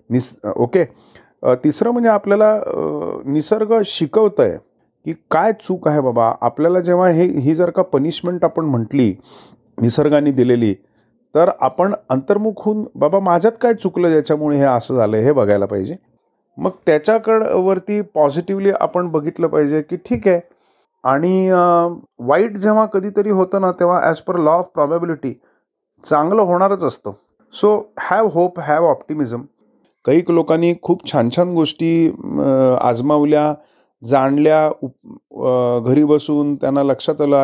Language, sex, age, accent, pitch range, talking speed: Marathi, male, 40-59, native, 140-195 Hz, 105 wpm